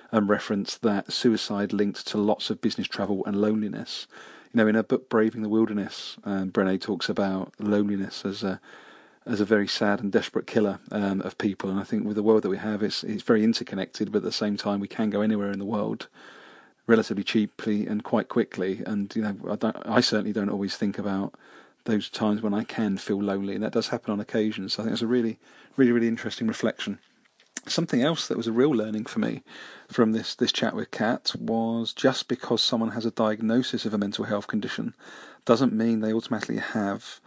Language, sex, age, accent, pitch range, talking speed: English, male, 40-59, British, 105-120 Hz, 215 wpm